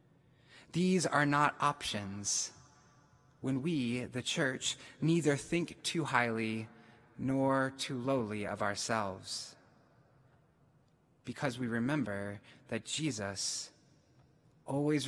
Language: English